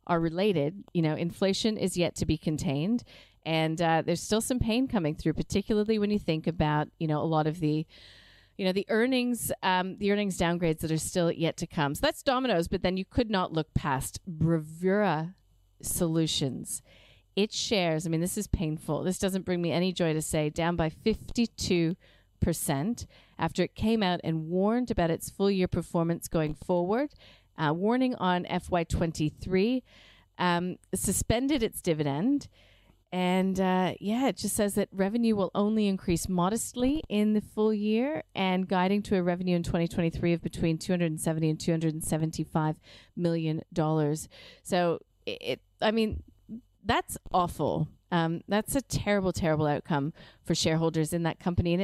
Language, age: English, 40-59